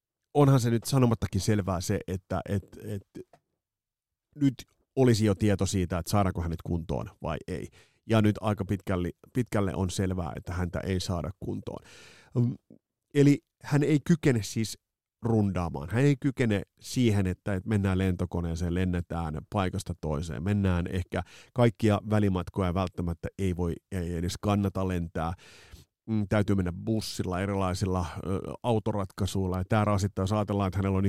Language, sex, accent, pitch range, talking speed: Finnish, male, native, 90-110 Hz, 140 wpm